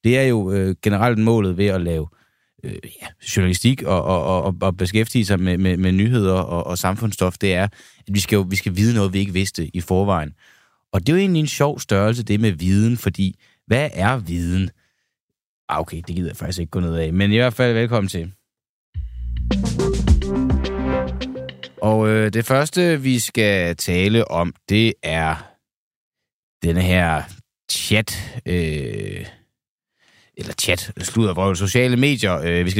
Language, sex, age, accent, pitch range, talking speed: Danish, male, 30-49, native, 90-110 Hz, 170 wpm